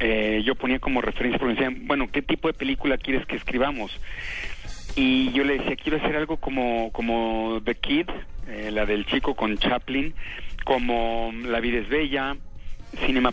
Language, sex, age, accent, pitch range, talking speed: Spanish, male, 40-59, Mexican, 115-145 Hz, 175 wpm